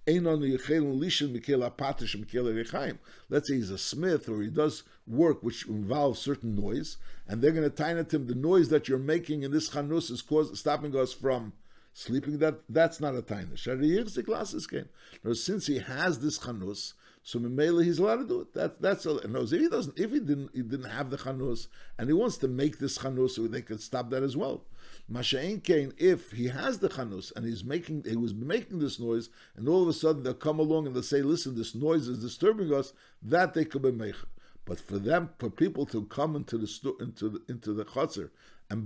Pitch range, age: 115-155 Hz, 60-79